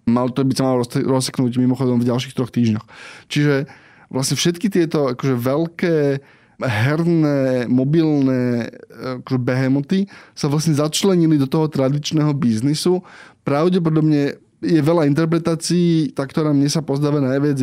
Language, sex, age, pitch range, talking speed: Slovak, male, 20-39, 130-155 Hz, 130 wpm